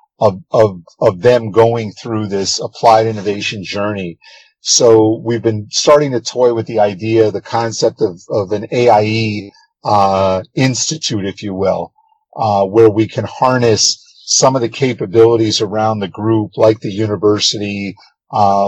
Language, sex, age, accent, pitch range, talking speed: English, male, 50-69, American, 105-125 Hz, 150 wpm